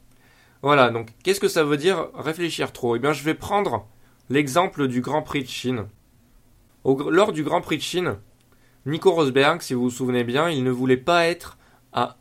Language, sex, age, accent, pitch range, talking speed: French, male, 20-39, French, 125-150 Hz, 195 wpm